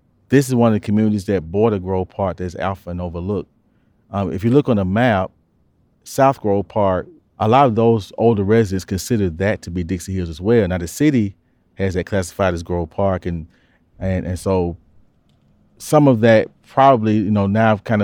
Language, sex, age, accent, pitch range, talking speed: English, male, 40-59, American, 95-110 Hz, 195 wpm